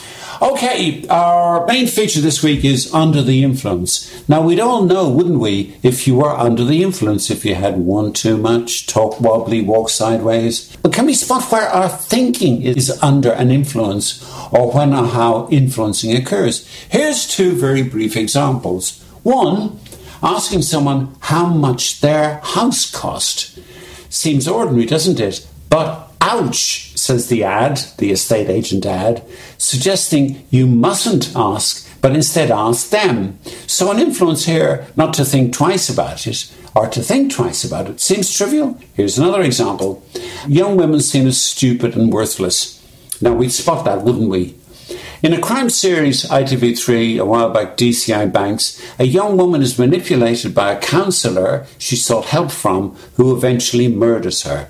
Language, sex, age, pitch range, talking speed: English, male, 60-79, 115-165 Hz, 155 wpm